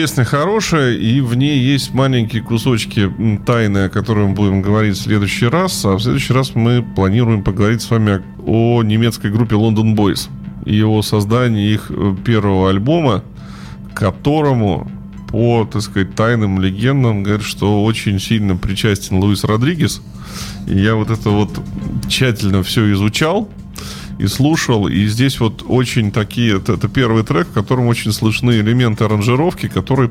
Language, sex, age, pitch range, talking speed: Russian, male, 20-39, 100-120 Hz, 150 wpm